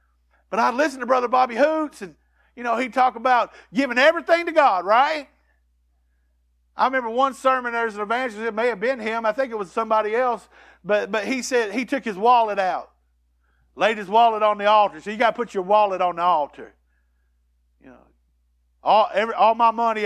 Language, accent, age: English, American, 50-69